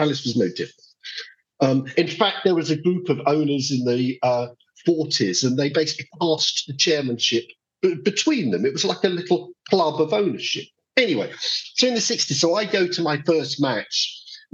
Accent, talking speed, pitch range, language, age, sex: British, 200 wpm, 130-185 Hz, English, 50-69, male